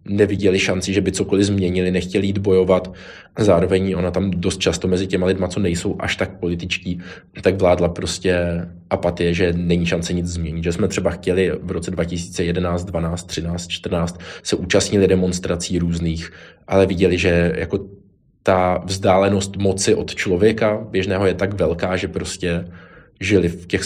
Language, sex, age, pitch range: Czech, male, 20-39, 90-100 Hz